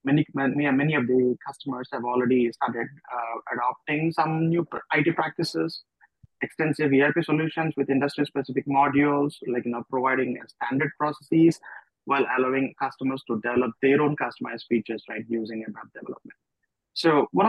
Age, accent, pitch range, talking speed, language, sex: 20-39, Indian, 125-150 Hz, 140 wpm, English, male